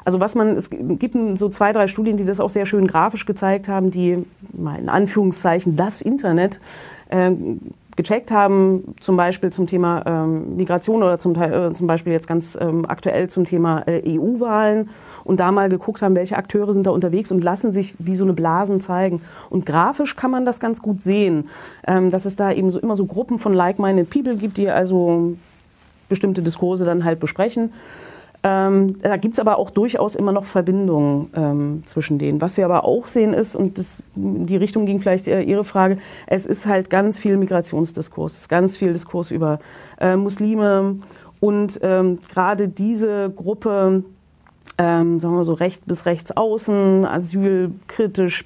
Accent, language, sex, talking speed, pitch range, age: German, German, female, 180 wpm, 175-205 Hz, 30-49